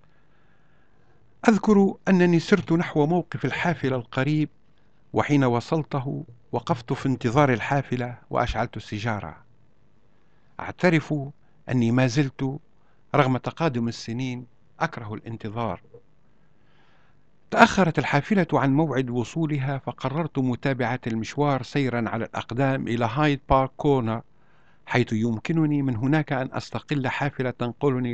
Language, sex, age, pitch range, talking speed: Arabic, male, 50-69, 120-150 Hz, 100 wpm